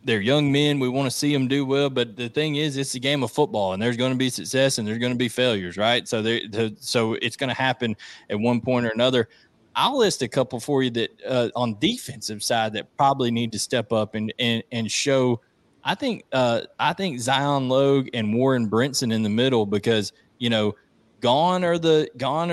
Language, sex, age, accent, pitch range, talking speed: English, male, 20-39, American, 115-140 Hz, 230 wpm